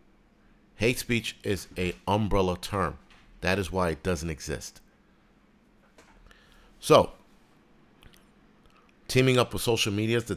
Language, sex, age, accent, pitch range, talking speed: English, male, 50-69, American, 90-120 Hz, 110 wpm